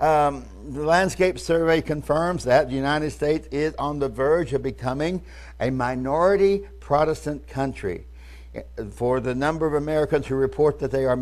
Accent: American